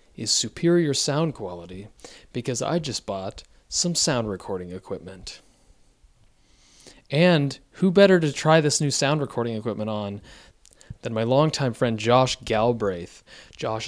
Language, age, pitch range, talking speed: English, 20-39, 105-125 Hz, 130 wpm